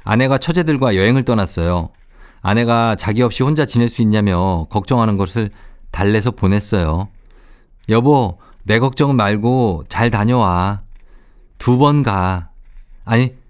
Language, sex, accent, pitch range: Korean, male, native, 95-135 Hz